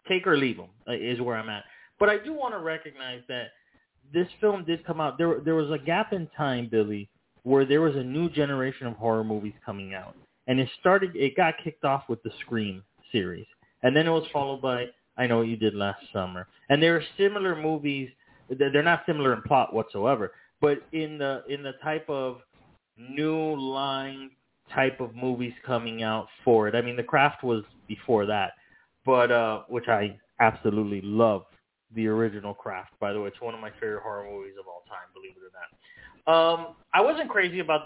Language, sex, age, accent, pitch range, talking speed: English, male, 30-49, American, 120-160 Hz, 205 wpm